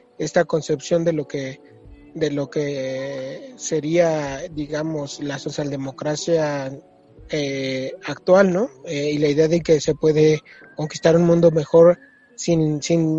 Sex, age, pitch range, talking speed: male, 30-49, 150-180 Hz, 130 wpm